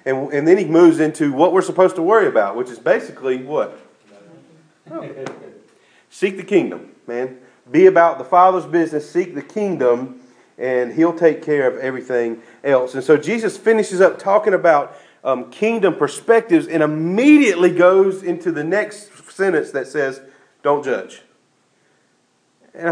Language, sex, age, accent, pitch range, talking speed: English, male, 40-59, American, 145-230 Hz, 150 wpm